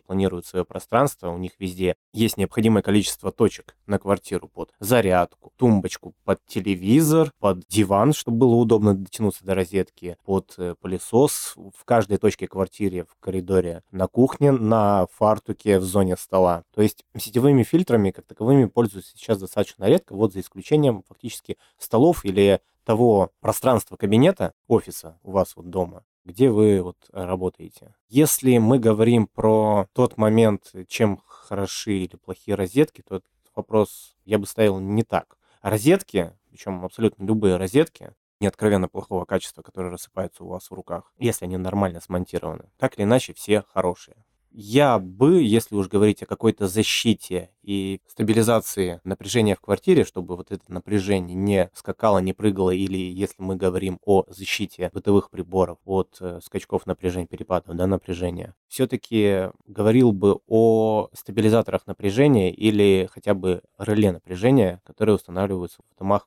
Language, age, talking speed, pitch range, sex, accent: Russian, 20-39, 145 wpm, 95-110 Hz, male, native